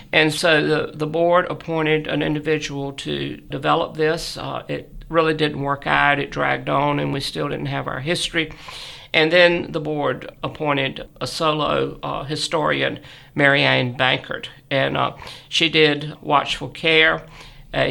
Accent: American